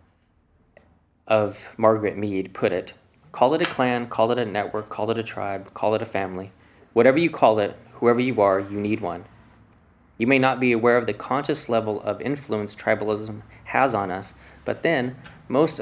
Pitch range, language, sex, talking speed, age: 100-120 Hz, English, male, 185 wpm, 20-39